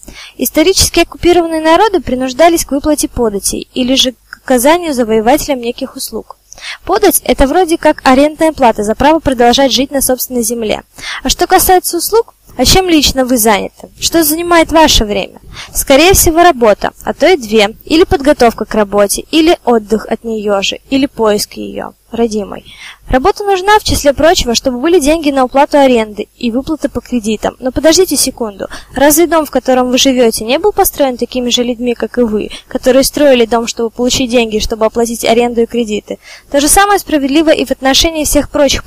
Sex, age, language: female, 20-39, Russian